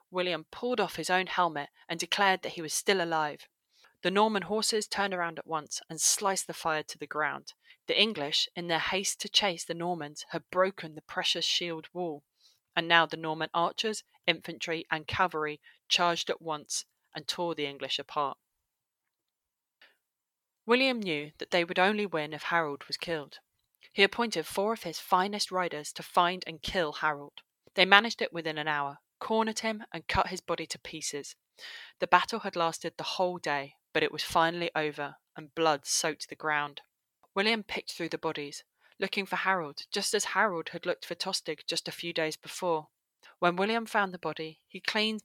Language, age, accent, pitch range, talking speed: English, 30-49, British, 155-195 Hz, 185 wpm